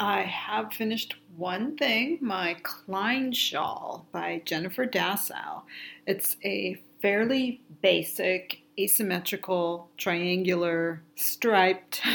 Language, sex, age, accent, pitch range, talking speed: English, female, 40-59, American, 170-195 Hz, 90 wpm